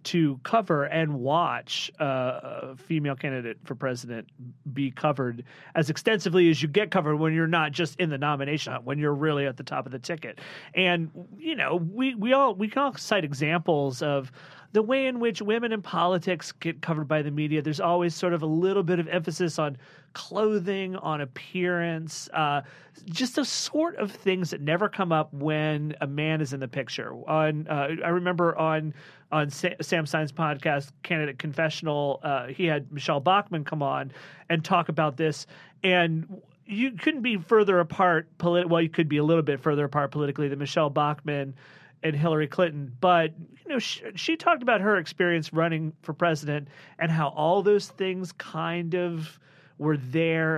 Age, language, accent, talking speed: 30-49, English, American, 185 wpm